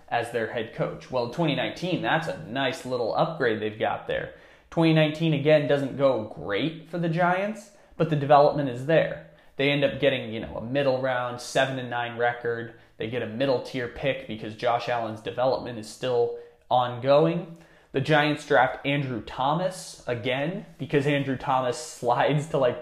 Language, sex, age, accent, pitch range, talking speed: English, male, 20-39, American, 120-155 Hz, 170 wpm